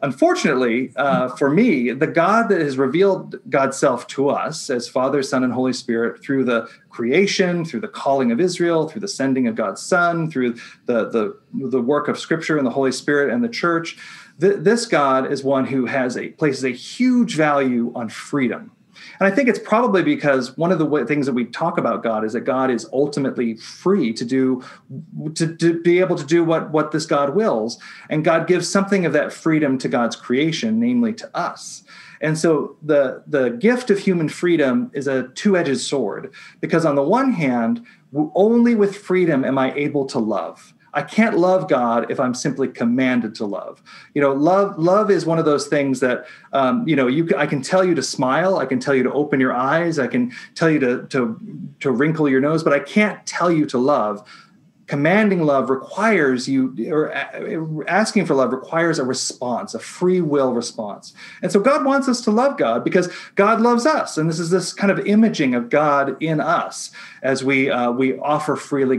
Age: 40-59